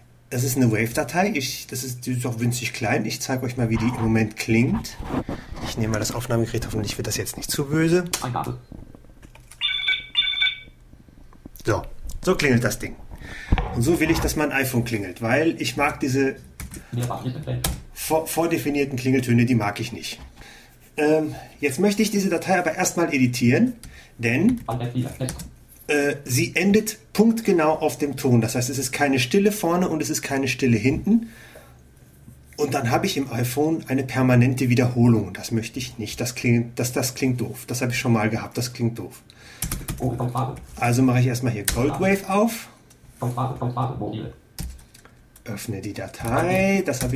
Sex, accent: male, German